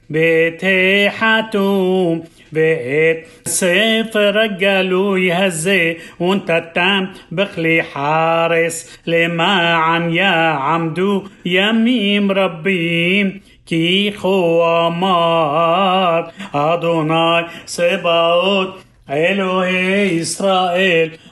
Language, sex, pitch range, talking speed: Hebrew, male, 175-210 Hz, 60 wpm